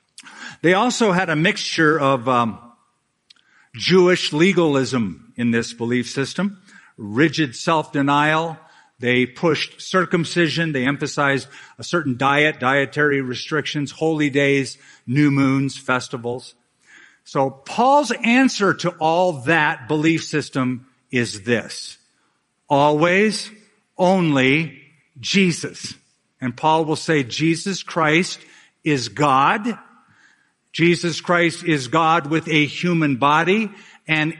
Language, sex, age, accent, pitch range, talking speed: English, male, 50-69, American, 130-175 Hz, 105 wpm